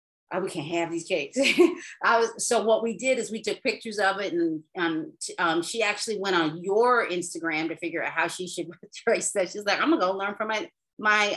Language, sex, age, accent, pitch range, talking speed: English, female, 40-59, American, 160-220 Hz, 235 wpm